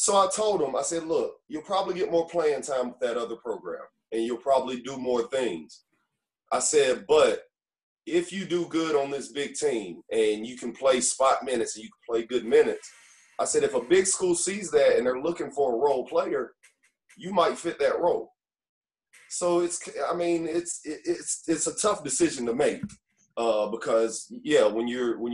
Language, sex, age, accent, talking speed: English, male, 30-49, American, 195 wpm